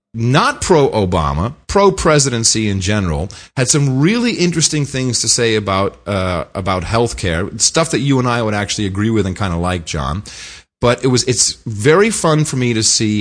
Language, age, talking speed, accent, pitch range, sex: English, 40-59, 190 wpm, American, 95-140 Hz, male